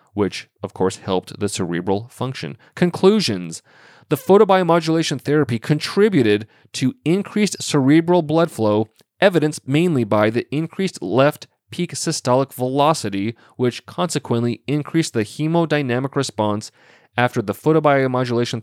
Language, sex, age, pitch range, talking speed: English, male, 30-49, 110-145 Hz, 115 wpm